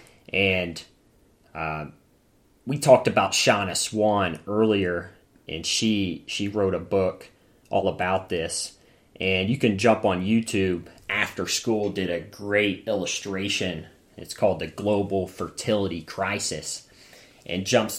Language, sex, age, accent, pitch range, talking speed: English, male, 30-49, American, 85-105 Hz, 125 wpm